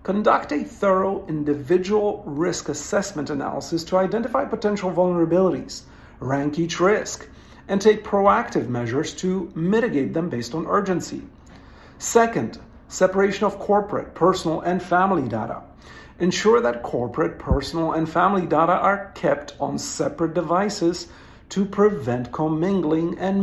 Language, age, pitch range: English, 50-69, 145-195 Hz